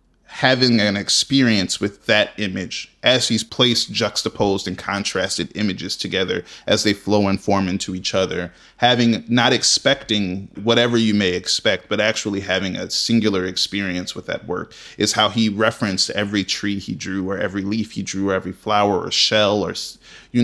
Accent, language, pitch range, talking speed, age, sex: American, English, 100-120 Hz, 170 wpm, 20-39, male